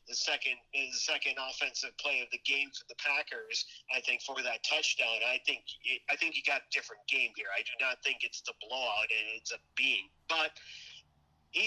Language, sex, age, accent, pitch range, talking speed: English, male, 40-59, American, 130-175 Hz, 210 wpm